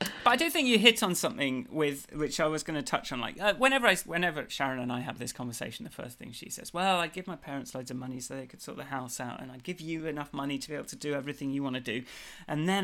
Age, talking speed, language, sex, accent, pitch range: 30-49, 305 wpm, English, male, British, 130-185 Hz